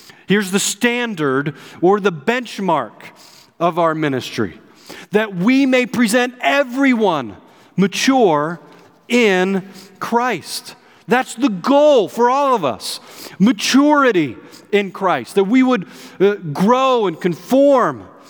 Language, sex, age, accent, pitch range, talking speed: English, male, 40-59, American, 185-245 Hz, 110 wpm